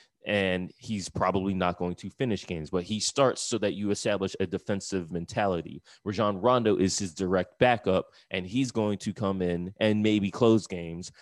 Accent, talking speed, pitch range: American, 180 wpm, 90-105 Hz